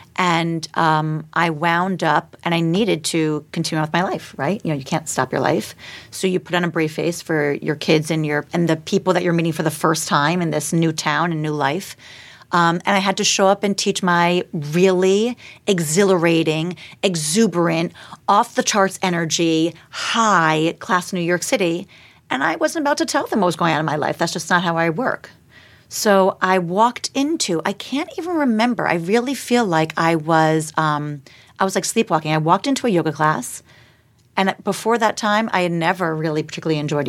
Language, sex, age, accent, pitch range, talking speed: English, female, 40-59, American, 160-200 Hz, 205 wpm